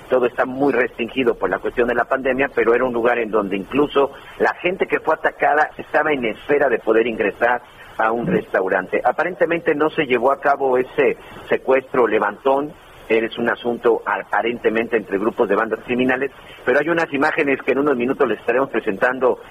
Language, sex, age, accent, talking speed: Spanish, male, 50-69, Mexican, 185 wpm